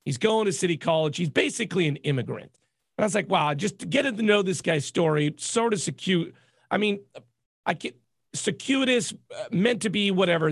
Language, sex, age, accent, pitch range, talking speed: English, male, 40-59, American, 155-210 Hz, 195 wpm